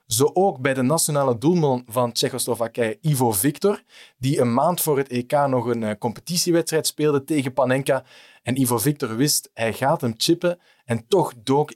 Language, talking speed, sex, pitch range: Dutch, 170 wpm, male, 125-155 Hz